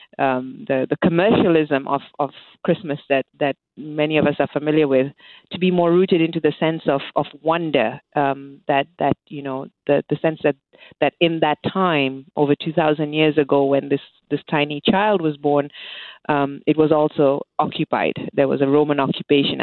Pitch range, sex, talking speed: 140-155 Hz, female, 180 wpm